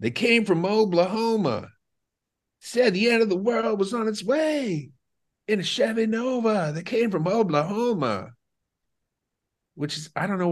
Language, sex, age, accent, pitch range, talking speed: English, male, 40-59, American, 130-205 Hz, 155 wpm